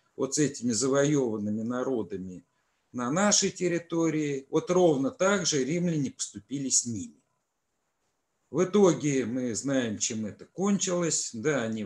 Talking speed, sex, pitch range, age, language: 125 wpm, male, 115-165 Hz, 50-69, Russian